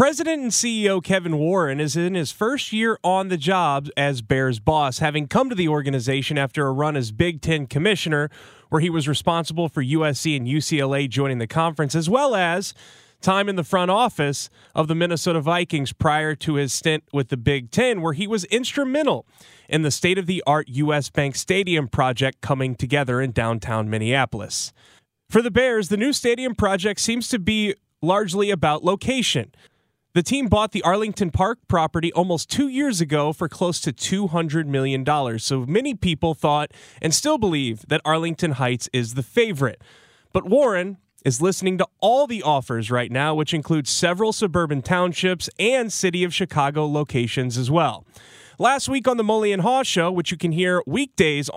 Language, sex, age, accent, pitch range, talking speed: English, male, 30-49, American, 140-195 Hz, 180 wpm